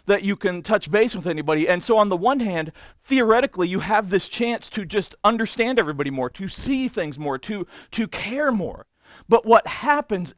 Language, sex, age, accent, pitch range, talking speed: English, male, 40-59, American, 180-225 Hz, 195 wpm